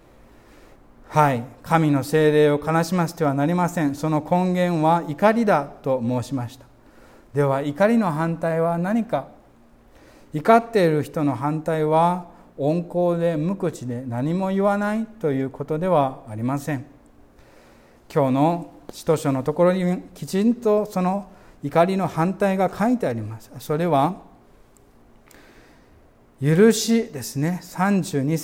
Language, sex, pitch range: Japanese, male, 150-190 Hz